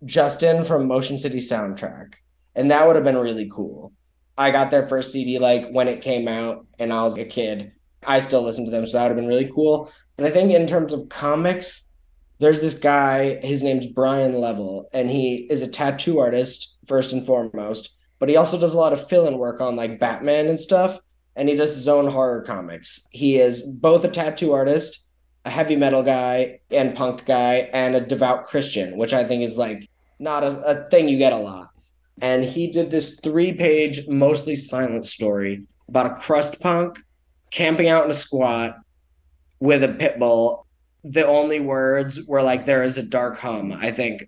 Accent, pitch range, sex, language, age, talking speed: American, 115-145 Hz, male, English, 20-39, 200 wpm